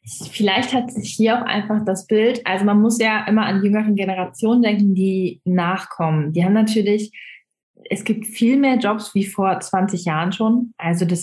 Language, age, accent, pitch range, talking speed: German, 20-39, German, 180-225 Hz, 180 wpm